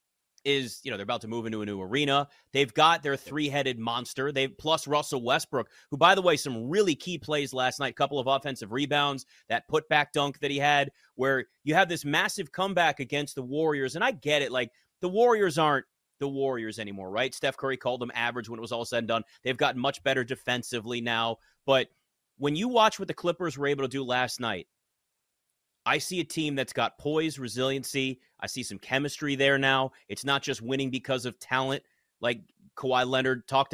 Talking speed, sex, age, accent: 215 wpm, male, 30-49, American